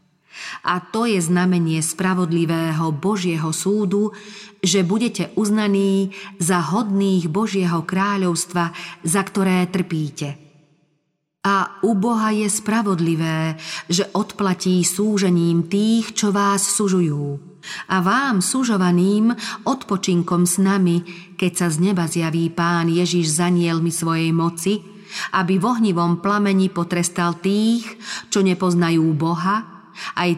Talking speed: 110 wpm